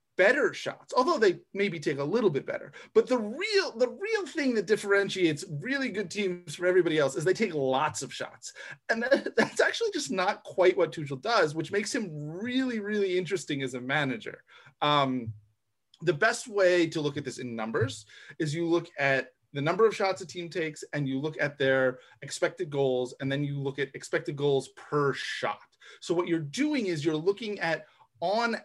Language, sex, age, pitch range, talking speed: English, male, 30-49, 155-230 Hz, 195 wpm